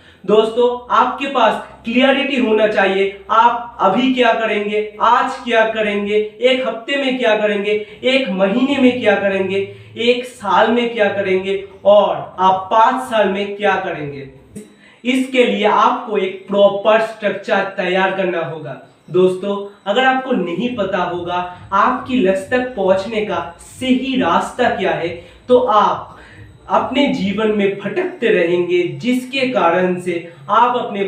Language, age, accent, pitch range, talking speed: Hindi, 40-59, native, 185-235 Hz, 135 wpm